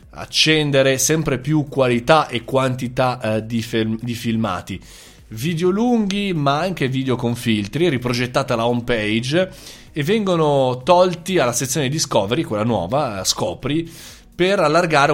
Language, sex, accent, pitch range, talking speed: Italian, male, native, 110-150 Hz, 135 wpm